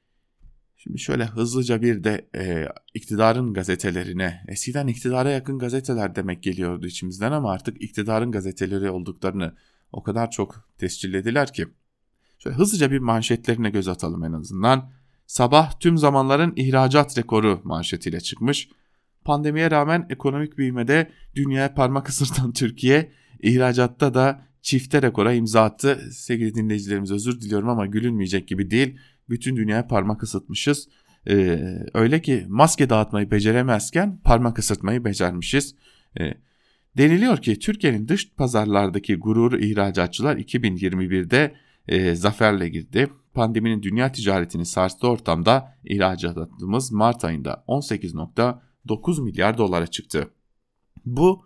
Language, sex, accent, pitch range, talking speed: German, male, Turkish, 100-135 Hz, 115 wpm